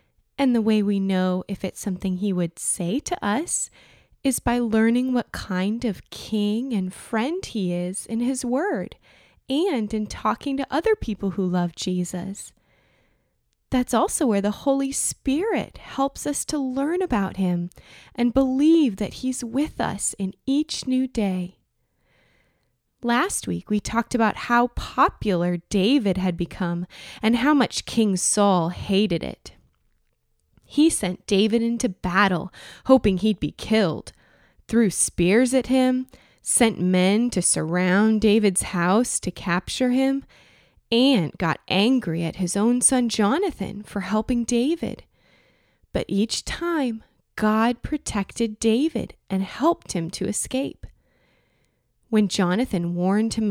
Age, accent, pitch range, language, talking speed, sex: 20-39, American, 185-255 Hz, English, 140 wpm, female